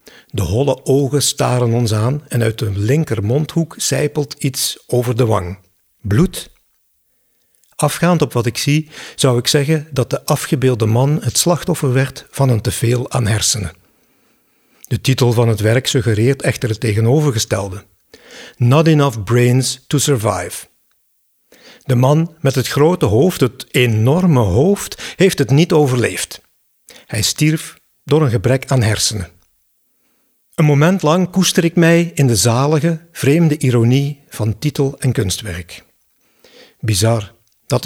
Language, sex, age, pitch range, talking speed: Dutch, male, 50-69, 115-150 Hz, 140 wpm